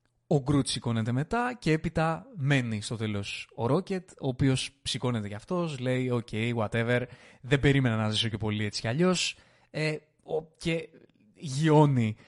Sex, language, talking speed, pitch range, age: male, Greek, 145 wpm, 115-145 Hz, 20-39